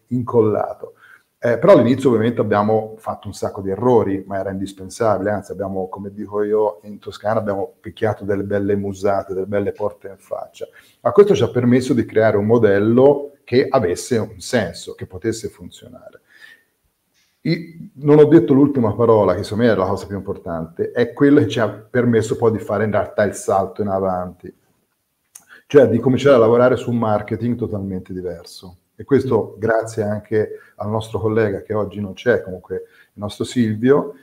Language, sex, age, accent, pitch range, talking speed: Italian, male, 40-59, native, 105-140 Hz, 175 wpm